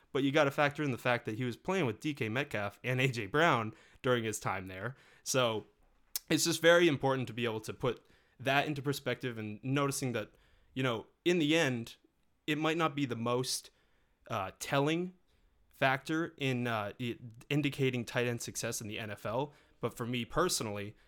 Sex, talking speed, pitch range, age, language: male, 185 wpm, 110-140 Hz, 20-39, English